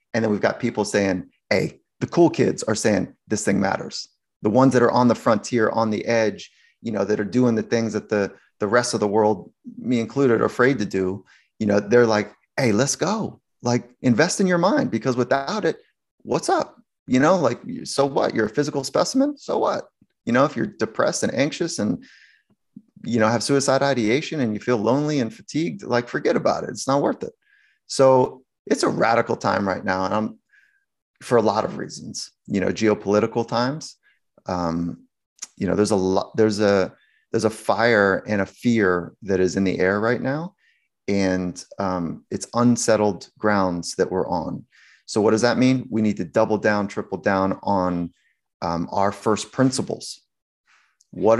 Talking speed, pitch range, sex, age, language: 195 wpm, 100-125 Hz, male, 30-49, English